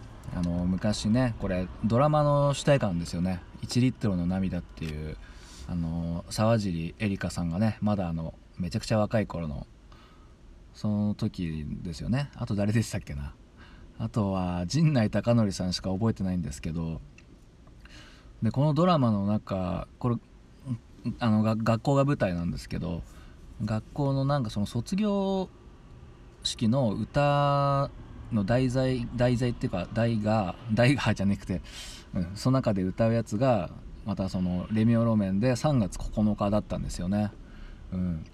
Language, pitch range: Japanese, 90-120 Hz